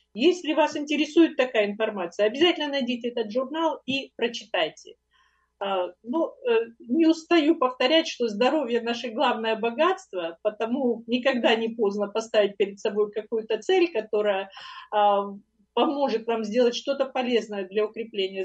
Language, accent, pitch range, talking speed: Russian, native, 210-285 Hz, 115 wpm